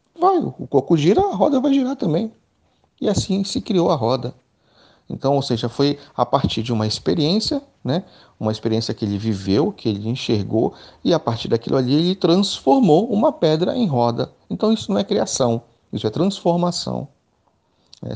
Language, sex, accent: Portuguese, male, Brazilian